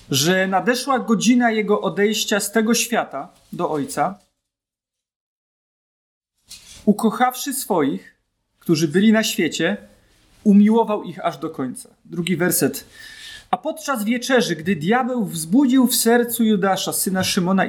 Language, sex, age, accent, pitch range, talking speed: Polish, male, 30-49, native, 165-230 Hz, 115 wpm